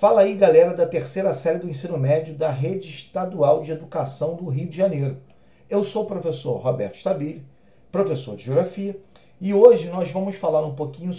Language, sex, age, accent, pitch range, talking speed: Portuguese, male, 40-59, Brazilian, 140-185 Hz, 180 wpm